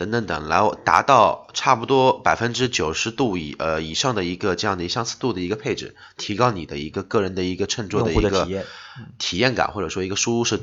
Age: 20-39